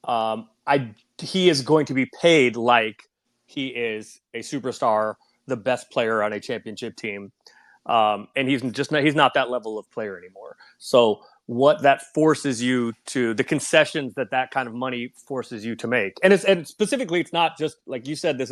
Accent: American